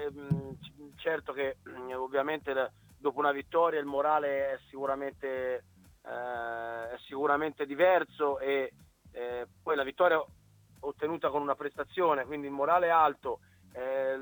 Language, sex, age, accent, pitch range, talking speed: Italian, male, 30-49, native, 130-155 Hz, 125 wpm